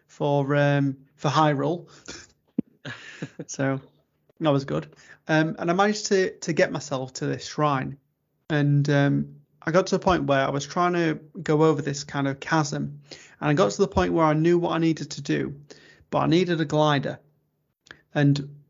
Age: 30-49